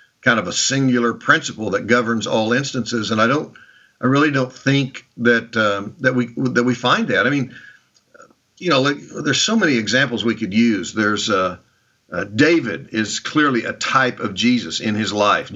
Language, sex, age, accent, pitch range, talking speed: English, male, 50-69, American, 110-130 Hz, 190 wpm